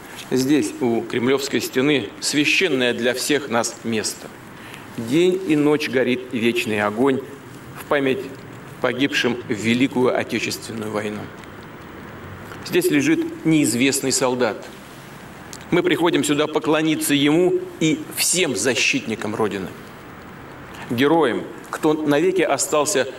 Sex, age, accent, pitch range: male, 40-59, native, 125-160 Hz